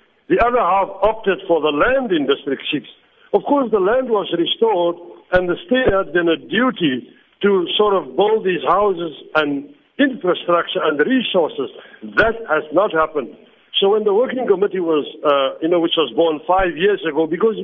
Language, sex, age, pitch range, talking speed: English, male, 60-79, 165-255 Hz, 180 wpm